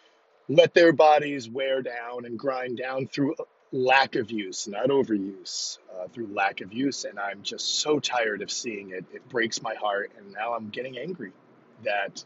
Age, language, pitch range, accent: 40-59, English, 115-150 Hz, American